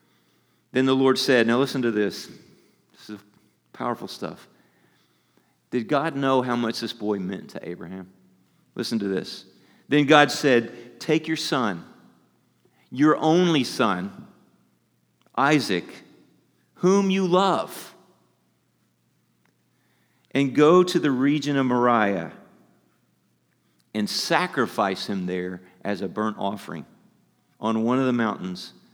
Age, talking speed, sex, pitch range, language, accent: 40-59, 120 wpm, male, 95-135 Hz, English, American